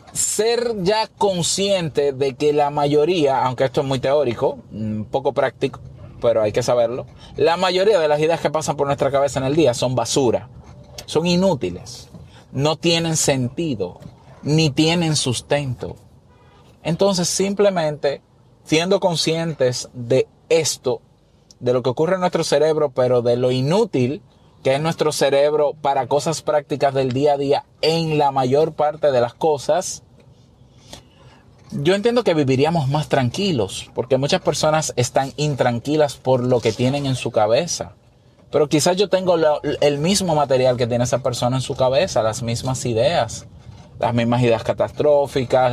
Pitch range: 120-155 Hz